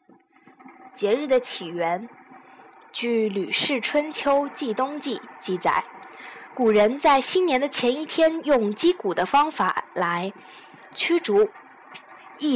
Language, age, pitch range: Chinese, 10-29, 205-295 Hz